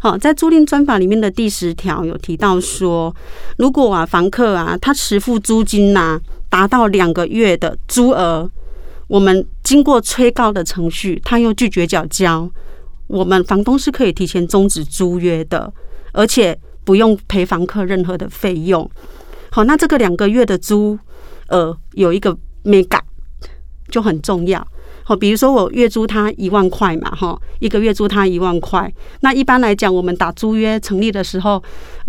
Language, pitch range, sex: Chinese, 180-230 Hz, female